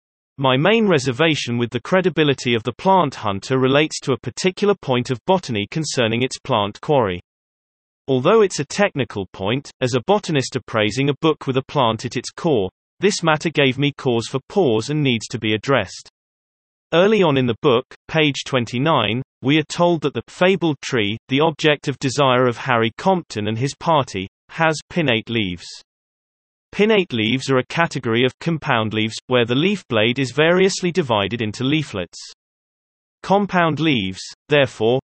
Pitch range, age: 120-160 Hz, 30-49